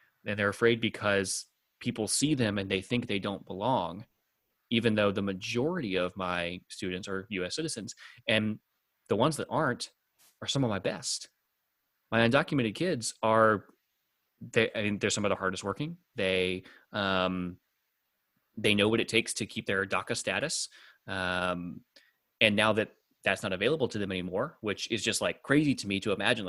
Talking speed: 170 wpm